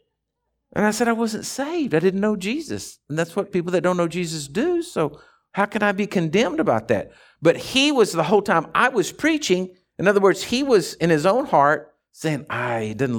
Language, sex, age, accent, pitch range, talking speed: English, male, 50-69, American, 130-215 Hz, 225 wpm